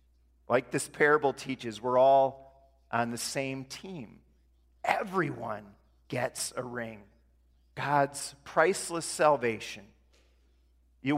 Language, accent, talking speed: English, American, 95 wpm